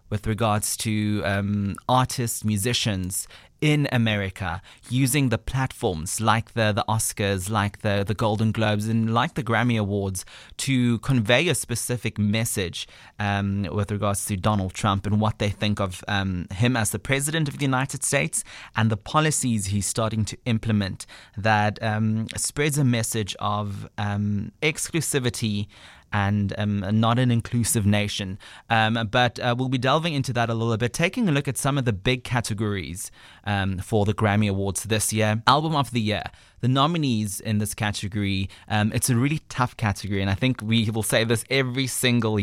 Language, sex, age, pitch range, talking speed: English, male, 30-49, 100-120 Hz, 175 wpm